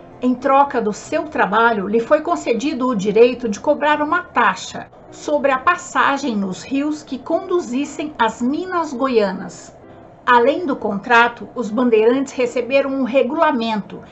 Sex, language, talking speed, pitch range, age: female, Portuguese, 135 wpm, 230-300 Hz, 60-79